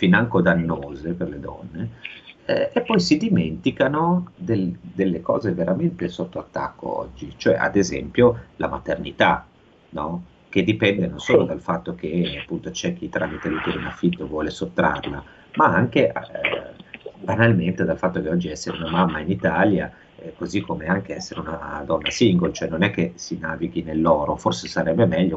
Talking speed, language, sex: 165 wpm, Italian, male